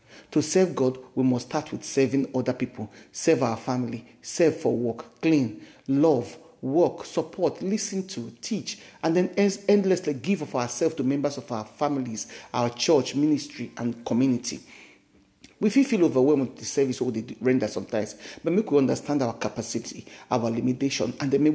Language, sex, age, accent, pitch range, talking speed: English, male, 50-69, Nigerian, 120-150 Hz, 175 wpm